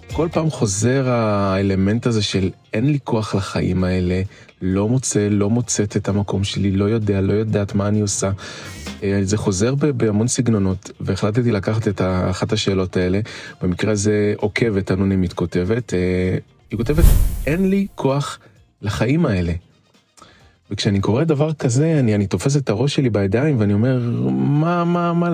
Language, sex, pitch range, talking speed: Hebrew, male, 100-140 Hz, 150 wpm